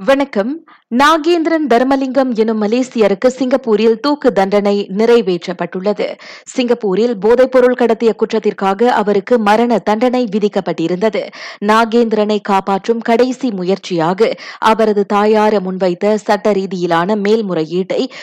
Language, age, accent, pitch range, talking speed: Tamil, 20-39, native, 190-235 Hz, 85 wpm